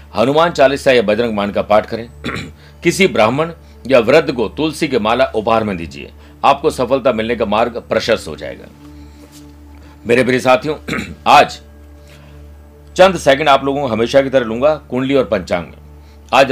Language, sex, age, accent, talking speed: Hindi, male, 50-69, native, 165 wpm